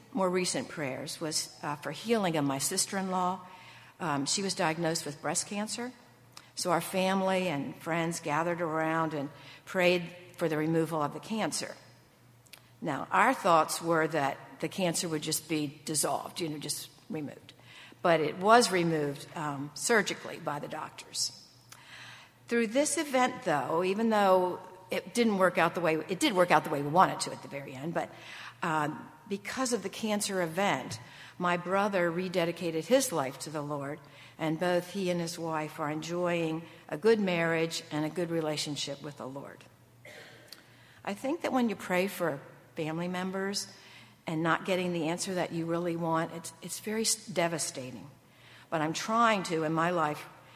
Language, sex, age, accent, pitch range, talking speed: English, female, 60-79, American, 150-190 Hz, 175 wpm